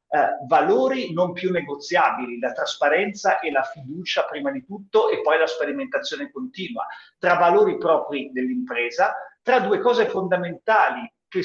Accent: native